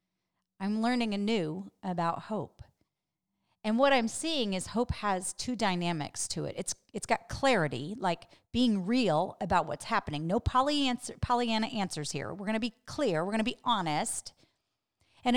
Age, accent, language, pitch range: 40-59, American, English, 160-220 Hz